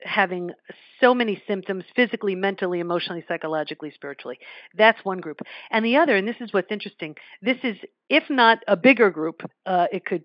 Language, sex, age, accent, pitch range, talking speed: English, female, 50-69, American, 180-245 Hz, 175 wpm